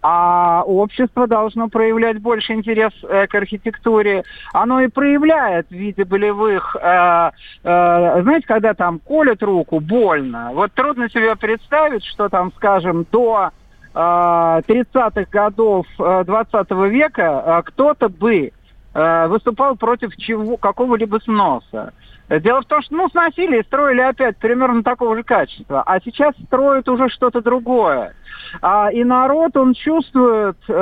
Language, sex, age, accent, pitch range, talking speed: Russian, male, 50-69, native, 200-250 Hz, 130 wpm